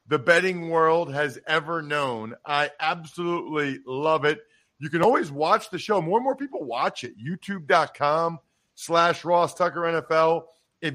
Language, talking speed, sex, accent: English, 155 wpm, male, American